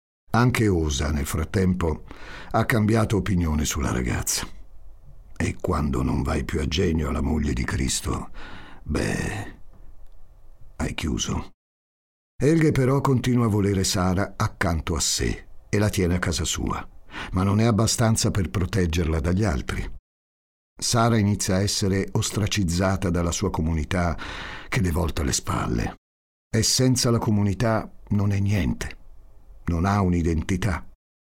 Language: Italian